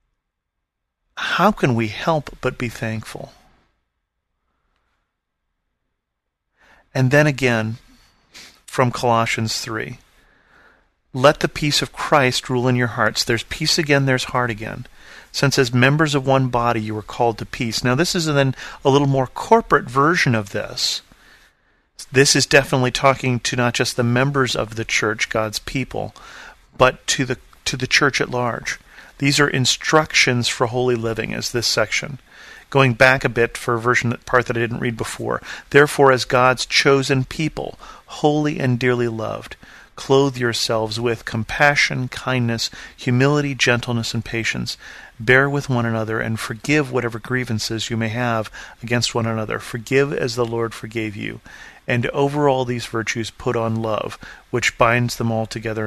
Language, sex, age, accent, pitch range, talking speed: English, male, 40-59, American, 115-135 Hz, 155 wpm